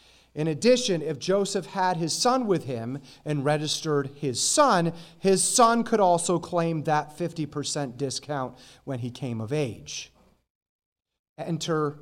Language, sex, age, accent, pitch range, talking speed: English, male, 30-49, American, 130-175 Hz, 135 wpm